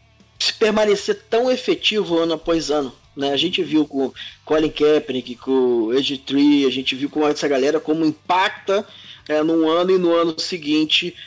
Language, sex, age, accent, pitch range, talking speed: Portuguese, male, 20-39, Brazilian, 135-165 Hz, 180 wpm